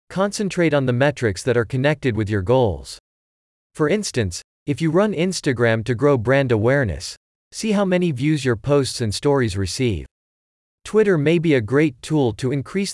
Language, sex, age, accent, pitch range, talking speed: English, male, 40-59, American, 110-155 Hz, 170 wpm